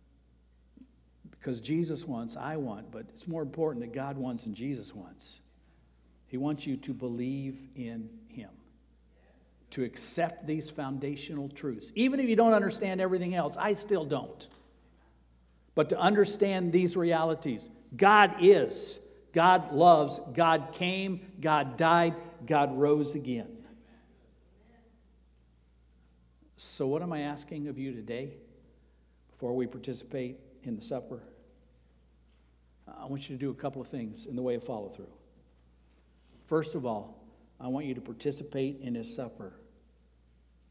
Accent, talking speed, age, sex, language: American, 135 wpm, 60-79, male, English